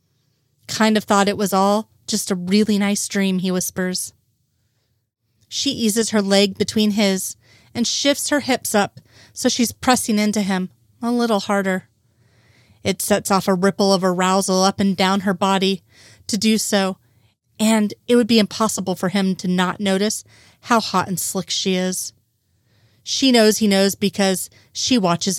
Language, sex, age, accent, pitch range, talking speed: English, female, 30-49, American, 130-210 Hz, 165 wpm